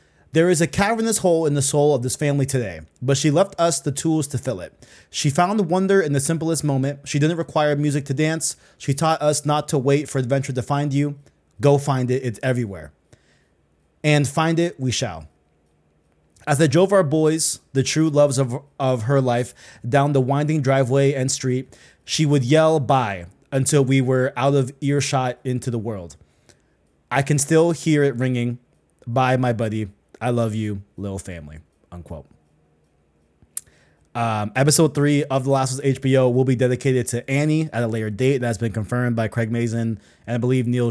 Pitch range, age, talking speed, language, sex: 115-145 Hz, 20-39, 190 wpm, English, male